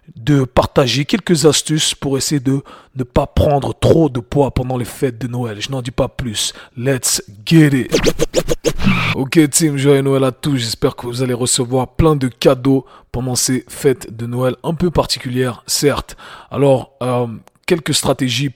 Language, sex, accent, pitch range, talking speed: French, male, French, 120-140 Hz, 170 wpm